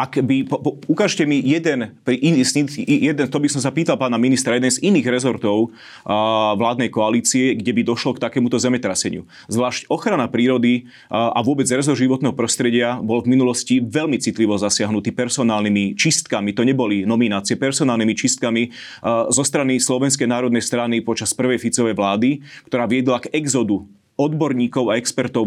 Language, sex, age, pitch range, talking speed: Slovak, male, 30-49, 115-130 Hz, 160 wpm